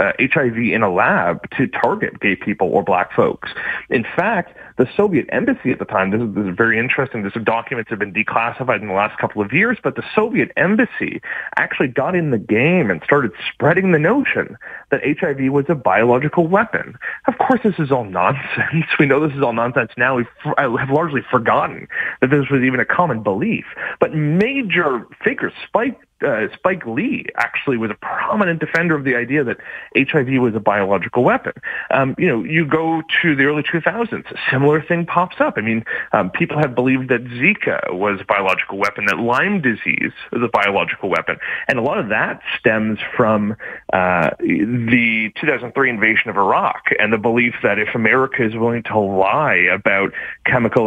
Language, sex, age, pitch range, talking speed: English, male, 30-49, 115-160 Hz, 190 wpm